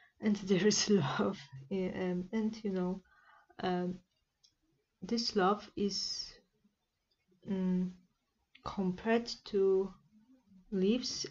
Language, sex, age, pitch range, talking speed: English, female, 20-39, 180-210 Hz, 85 wpm